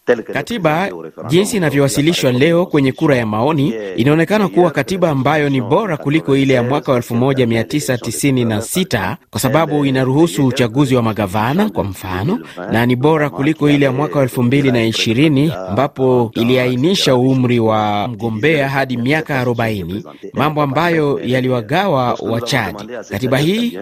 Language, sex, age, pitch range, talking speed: Swahili, male, 30-49, 115-155 Hz, 125 wpm